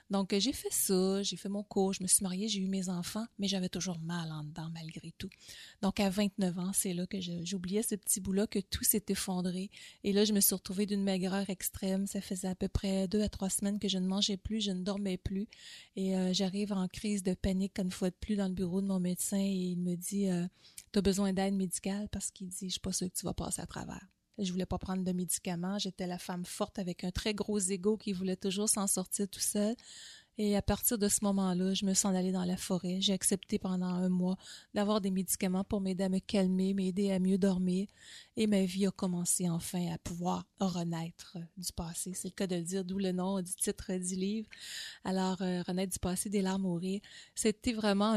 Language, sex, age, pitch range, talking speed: French, female, 30-49, 185-205 Hz, 240 wpm